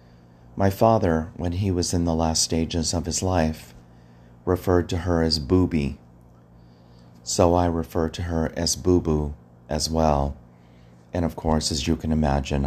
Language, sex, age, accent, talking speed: English, male, 40-59, American, 155 wpm